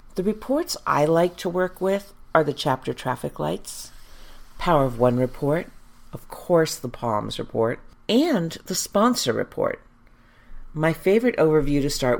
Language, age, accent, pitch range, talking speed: English, 50-69, American, 120-155 Hz, 150 wpm